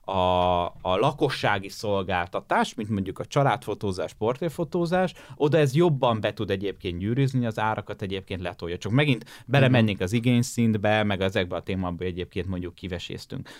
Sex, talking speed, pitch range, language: male, 140 wpm, 100-135 Hz, Hungarian